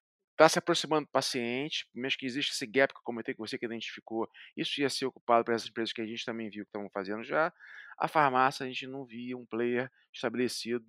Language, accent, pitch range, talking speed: Portuguese, Brazilian, 115-145 Hz, 230 wpm